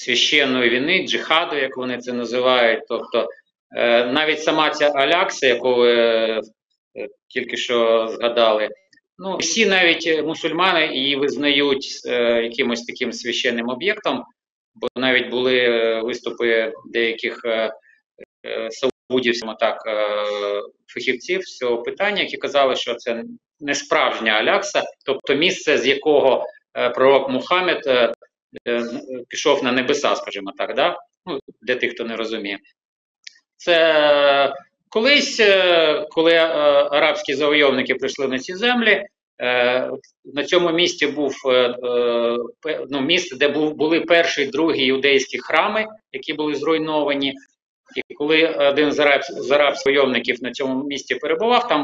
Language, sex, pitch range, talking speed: Ukrainian, male, 125-170 Hz, 120 wpm